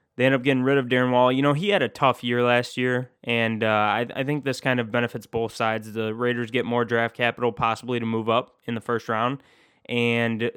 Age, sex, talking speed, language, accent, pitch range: 20-39, male, 245 wpm, English, American, 115-135 Hz